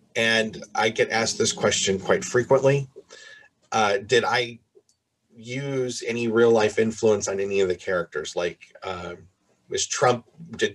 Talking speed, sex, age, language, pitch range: 140 wpm, male, 30-49, English, 100-135 Hz